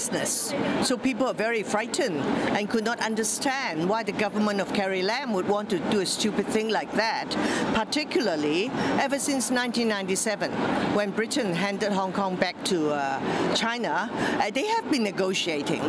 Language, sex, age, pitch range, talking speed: English, female, 50-69, 210-280 Hz, 160 wpm